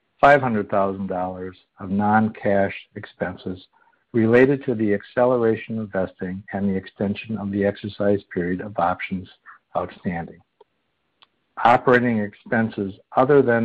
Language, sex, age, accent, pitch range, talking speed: English, male, 60-79, American, 95-115 Hz, 100 wpm